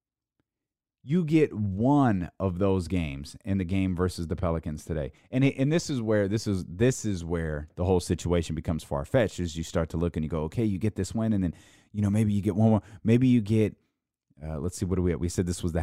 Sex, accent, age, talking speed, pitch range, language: male, American, 30-49, 255 wpm, 90-130 Hz, English